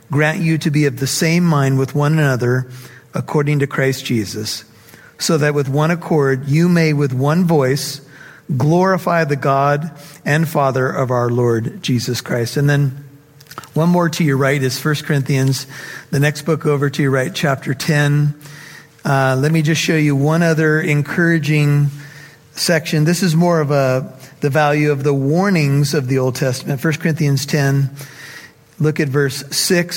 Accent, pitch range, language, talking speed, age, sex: American, 135-160 Hz, English, 170 wpm, 50-69, male